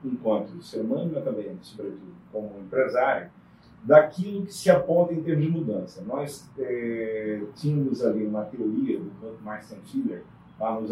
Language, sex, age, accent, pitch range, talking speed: Portuguese, male, 40-59, Brazilian, 115-175 Hz, 165 wpm